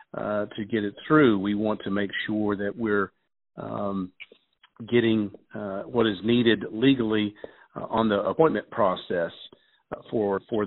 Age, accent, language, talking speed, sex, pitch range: 50-69, American, English, 150 wpm, male, 100-120 Hz